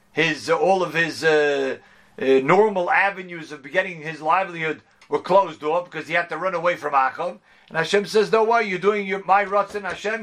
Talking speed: 210 wpm